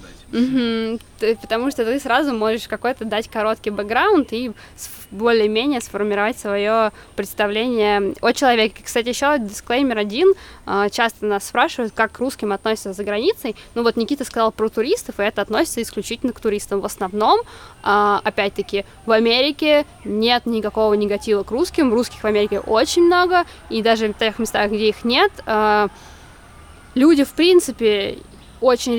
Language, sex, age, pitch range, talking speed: Russian, female, 20-39, 205-240 Hz, 140 wpm